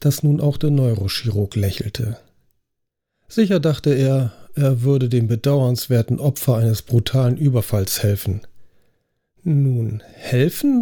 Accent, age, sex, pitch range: German, 40-59, male, 110-145 Hz